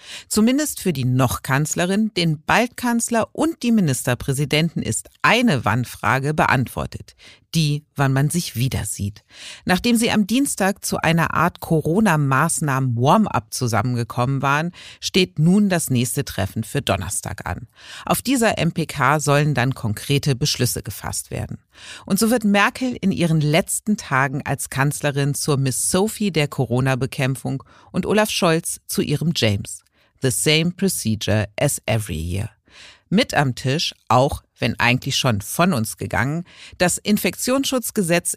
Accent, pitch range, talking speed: German, 125-175 Hz, 135 wpm